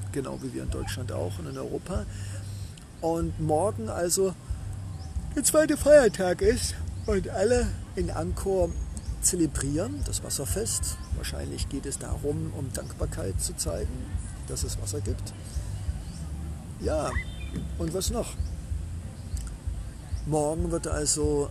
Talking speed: 115 wpm